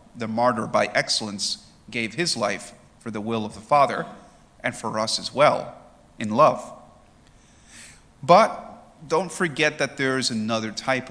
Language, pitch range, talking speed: English, 110-135 Hz, 150 wpm